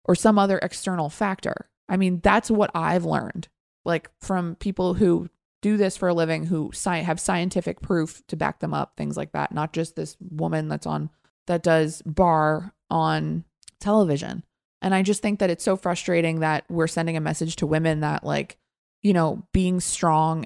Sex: female